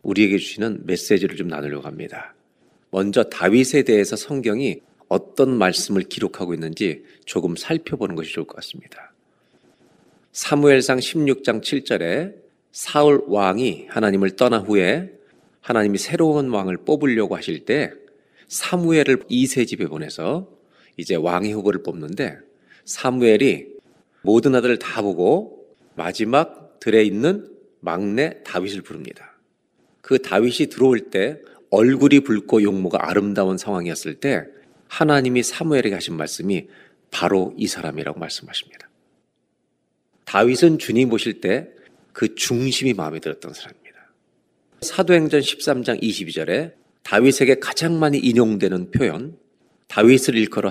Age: 40-59